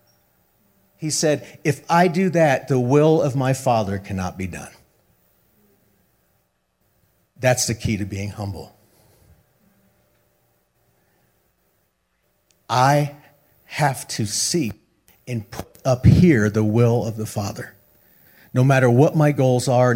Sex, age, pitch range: male, 50-69, 105-135 Hz